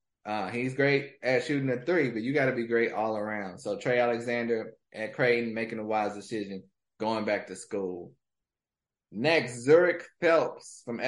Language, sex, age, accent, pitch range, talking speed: English, male, 20-39, American, 110-145 Hz, 175 wpm